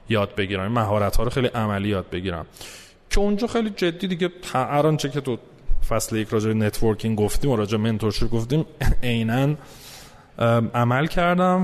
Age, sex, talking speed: 30-49, male, 160 wpm